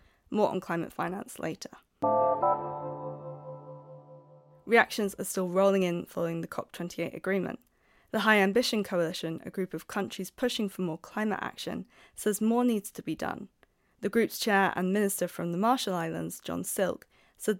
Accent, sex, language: British, female, English